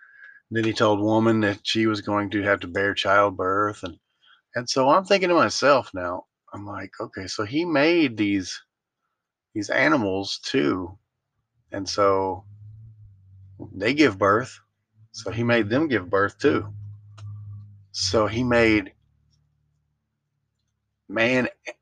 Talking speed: 130 wpm